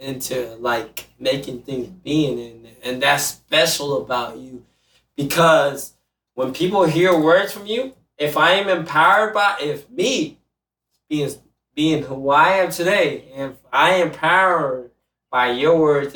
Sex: male